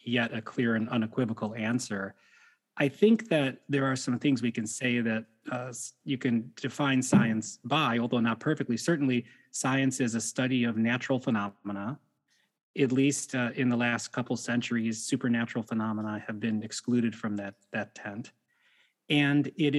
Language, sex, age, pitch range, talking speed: English, male, 30-49, 115-140 Hz, 160 wpm